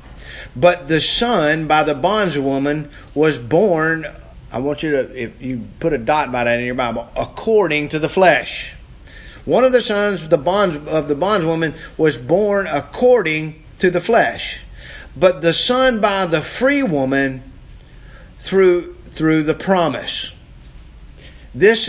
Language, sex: English, male